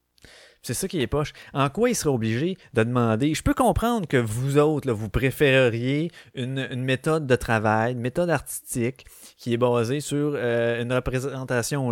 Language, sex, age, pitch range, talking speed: French, male, 30-49, 110-140 Hz, 180 wpm